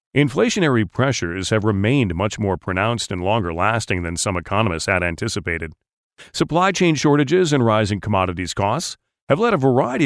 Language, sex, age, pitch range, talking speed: English, male, 40-59, 100-135 Hz, 150 wpm